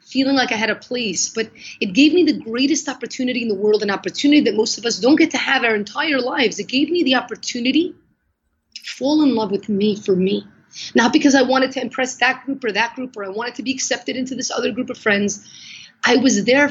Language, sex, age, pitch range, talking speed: English, female, 30-49, 220-275 Hz, 245 wpm